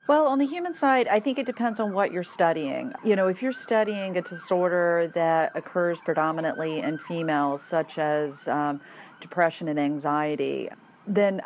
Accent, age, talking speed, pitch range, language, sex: American, 40-59, 170 wpm, 165-200 Hz, English, female